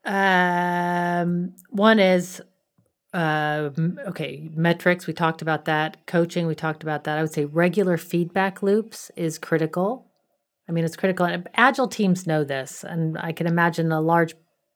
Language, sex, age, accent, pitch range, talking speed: English, female, 30-49, American, 160-200 Hz, 150 wpm